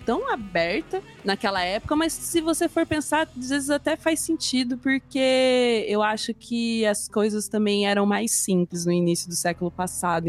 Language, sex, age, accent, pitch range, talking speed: Portuguese, female, 20-39, Brazilian, 180-245 Hz, 170 wpm